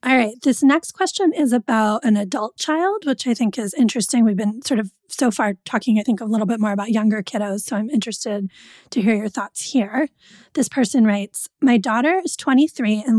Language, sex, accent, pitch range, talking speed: English, female, American, 220-260 Hz, 215 wpm